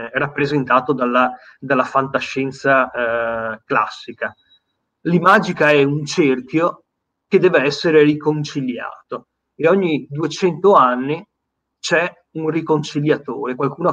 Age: 30-49